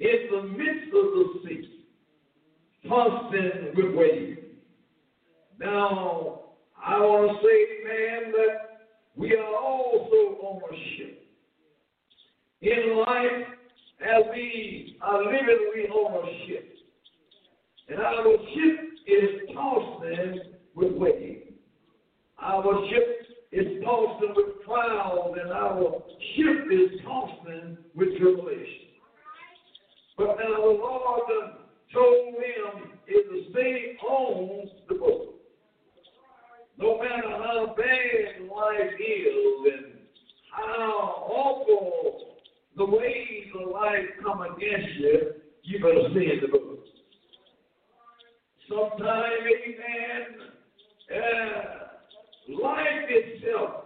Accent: American